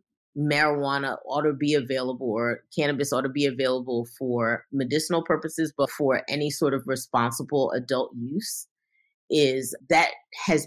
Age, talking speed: 30-49, 140 wpm